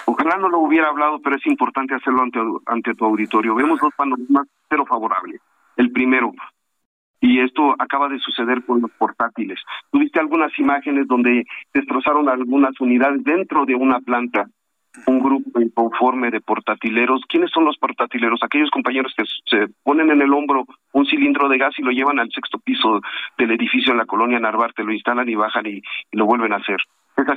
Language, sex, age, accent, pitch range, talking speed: Spanish, male, 50-69, Mexican, 120-150 Hz, 180 wpm